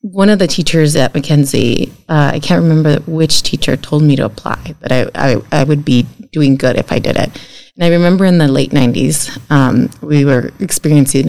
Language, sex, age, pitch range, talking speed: English, female, 30-49, 145-175 Hz, 205 wpm